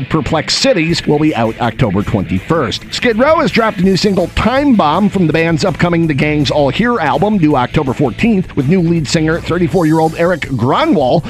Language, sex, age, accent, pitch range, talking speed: English, male, 50-69, American, 140-185 Hz, 195 wpm